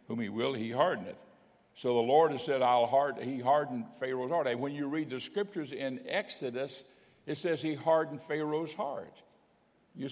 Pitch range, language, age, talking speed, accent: 145-215 Hz, English, 60-79, 180 wpm, American